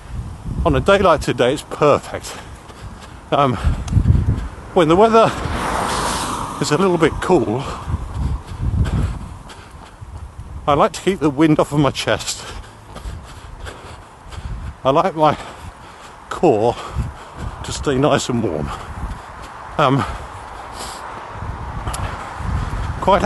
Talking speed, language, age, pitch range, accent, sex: 95 wpm, English, 50-69, 95-155 Hz, British, male